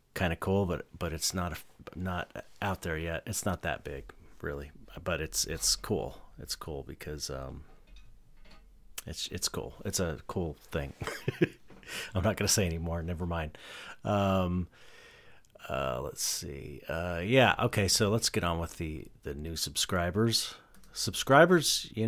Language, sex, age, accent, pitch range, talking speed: English, male, 40-59, American, 85-105 Hz, 150 wpm